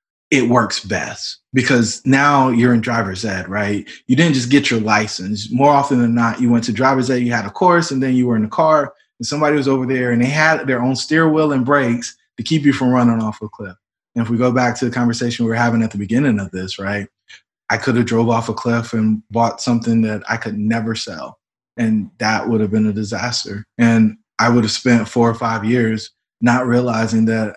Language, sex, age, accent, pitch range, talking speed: English, male, 20-39, American, 110-125 Hz, 235 wpm